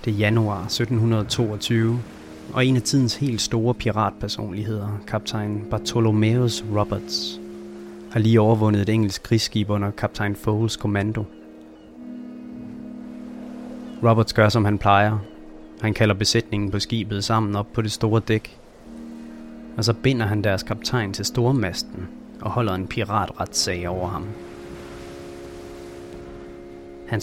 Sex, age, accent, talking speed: male, 30-49, native, 120 wpm